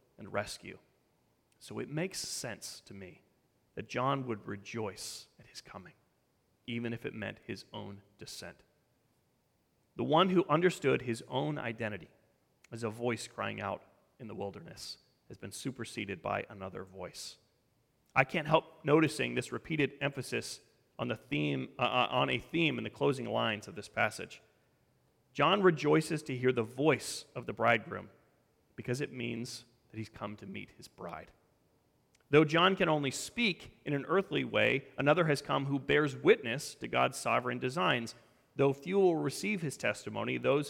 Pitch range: 115-150 Hz